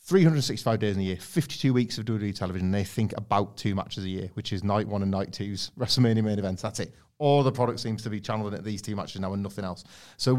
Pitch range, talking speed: 105-125 Hz, 265 wpm